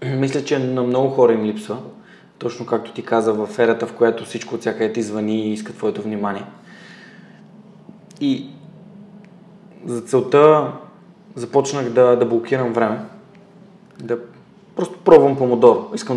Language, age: Bulgarian, 20-39